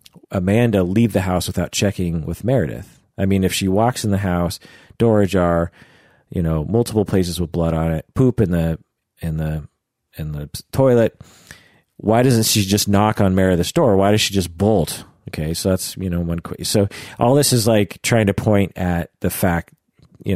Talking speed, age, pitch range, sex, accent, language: 195 wpm, 40-59, 85-110 Hz, male, American, English